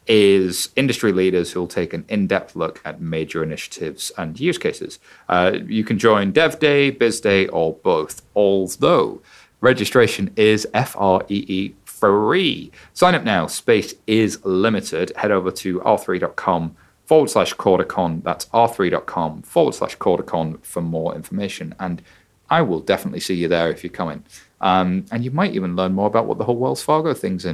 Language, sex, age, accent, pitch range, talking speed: English, male, 30-49, British, 90-120 Hz, 170 wpm